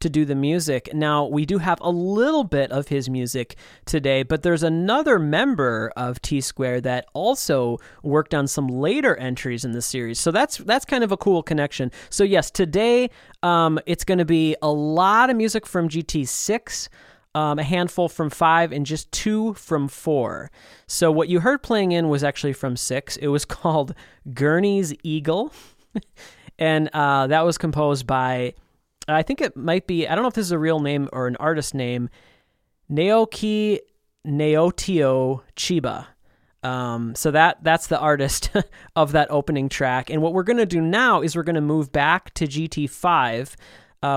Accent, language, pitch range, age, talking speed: American, English, 140-175 Hz, 20-39, 180 wpm